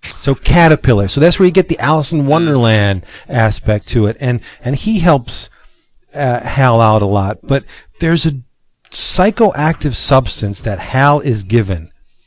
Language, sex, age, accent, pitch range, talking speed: English, male, 40-59, American, 110-150 Hz, 155 wpm